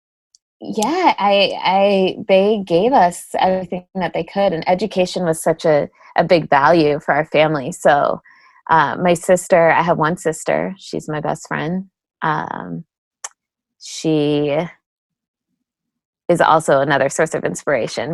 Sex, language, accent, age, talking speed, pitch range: female, English, American, 20-39, 135 wpm, 160-200 Hz